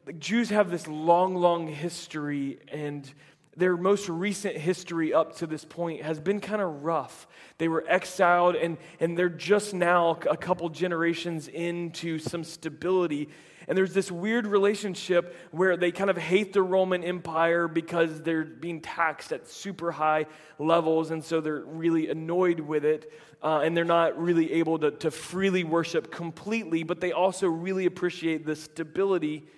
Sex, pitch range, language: male, 165-195 Hz, English